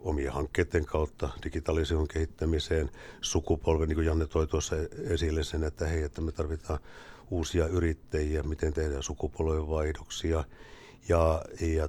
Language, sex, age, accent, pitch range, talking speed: Finnish, male, 60-79, native, 75-85 Hz, 120 wpm